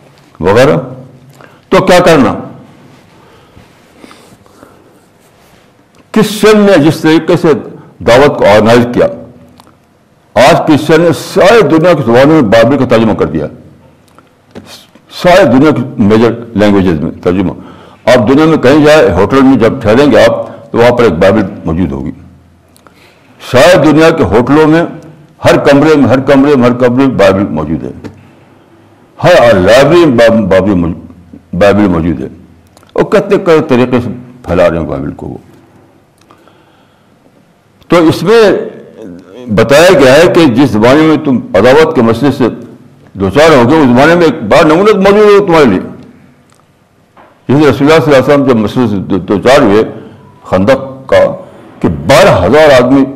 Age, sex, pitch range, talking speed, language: 60-79, male, 115-160 Hz, 140 wpm, Urdu